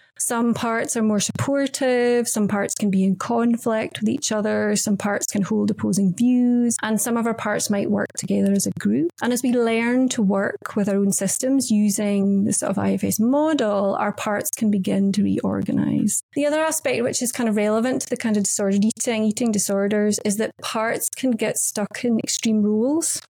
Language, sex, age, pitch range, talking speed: English, female, 30-49, 205-245 Hz, 200 wpm